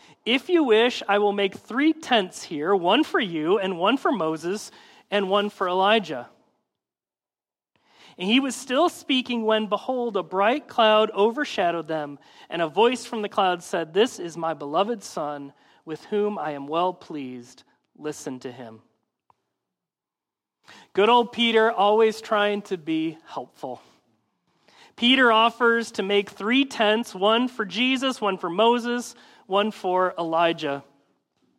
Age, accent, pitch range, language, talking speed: 40-59, American, 175-240 Hz, English, 145 wpm